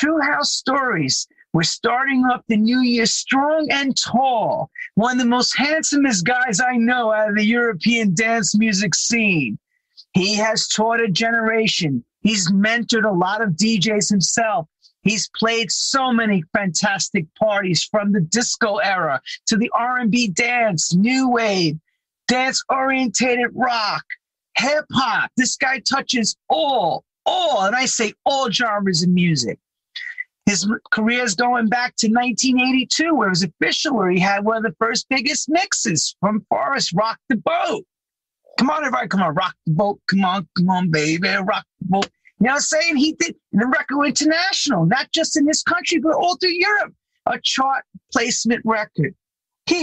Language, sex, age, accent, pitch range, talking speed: English, male, 40-59, American, 200-265 Hz, 160 wpm